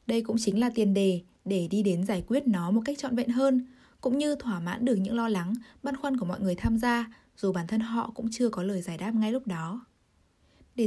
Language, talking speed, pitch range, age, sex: Vietnamese, 255 wpm, 195-255 Hz, 10-29, female